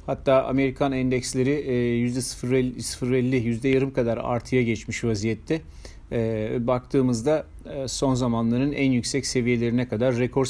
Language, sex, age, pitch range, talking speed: Turkish, male, 40-59, 120-140 Hz, 105 wpm